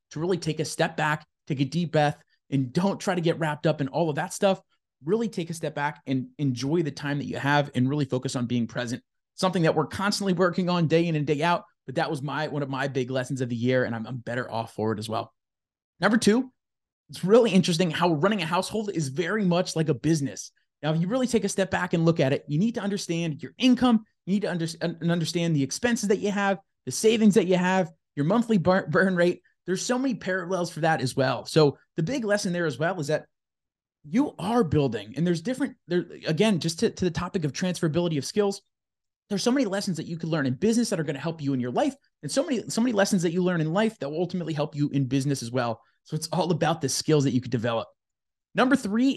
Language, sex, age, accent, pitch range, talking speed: English, male, 20-39, American, 145-195 Hz, 255 wpm